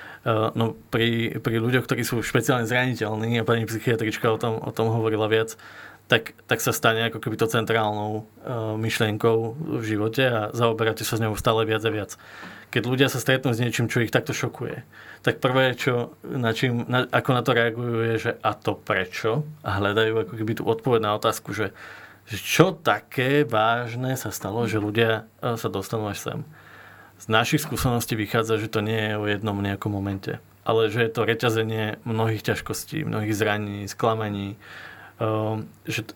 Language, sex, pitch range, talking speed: Slovak, male, 110-120 Hz, 175 wpm